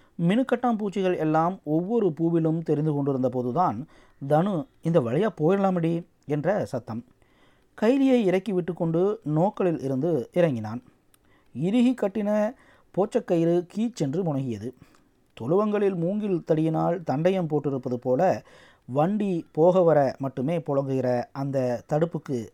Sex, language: male, Tamil